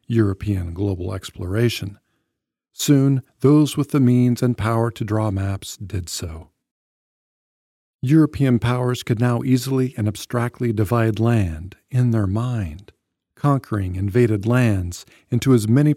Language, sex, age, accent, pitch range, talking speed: English, male, 40-59, American, 100-130 Hz, 125 wpm